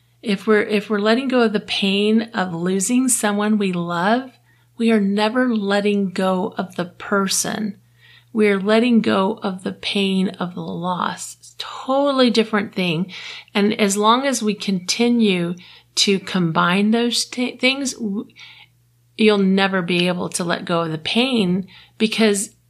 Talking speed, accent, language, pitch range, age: 155 wpm, American, English, 180-220 Hz, 40-59